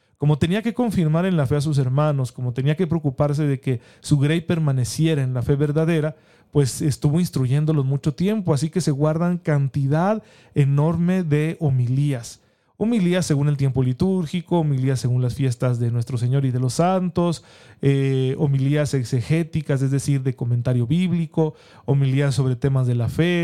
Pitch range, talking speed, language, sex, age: 130-165 Hz, 170 wpm, Spanish, male, 40-59